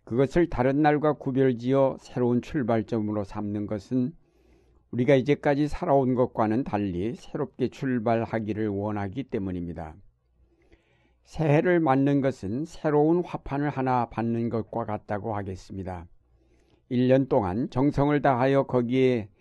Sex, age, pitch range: male, 60-79, 110-135 Hz